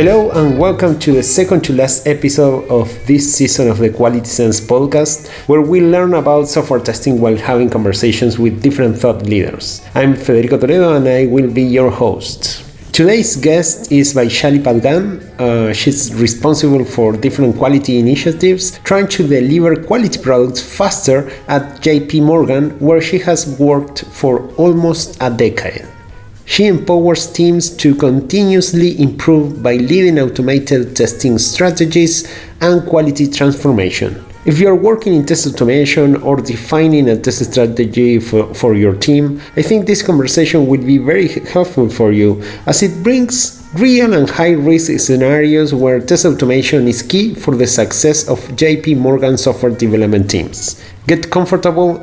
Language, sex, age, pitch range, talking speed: English, male, 30-49, 125-165 Hz, 155 wpm